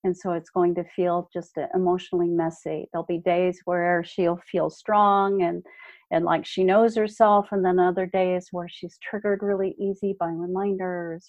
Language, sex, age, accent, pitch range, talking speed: English, female, 50-69, American, 180-220 Hz, 175 wpm